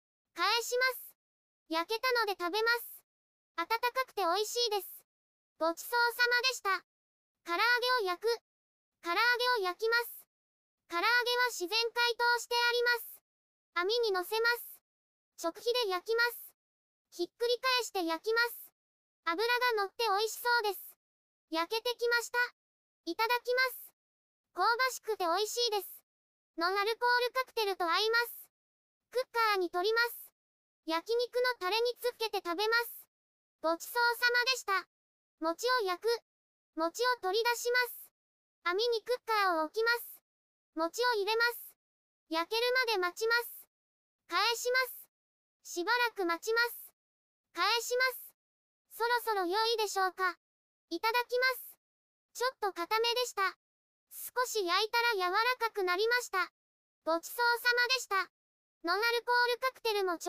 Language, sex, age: Japanese, male, 20-39